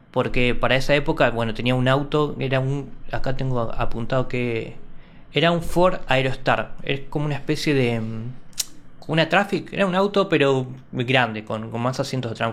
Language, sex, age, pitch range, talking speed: Spanish, male, 20-39, 125-165 Hz, 175 wpm